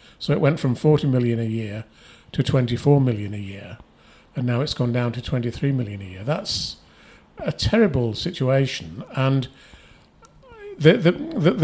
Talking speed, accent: 160 wpm, British